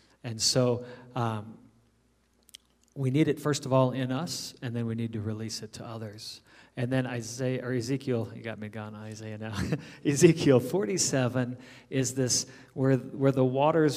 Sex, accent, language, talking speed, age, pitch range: male, American, English, 170 wpm, 40-59, 115-130 Hz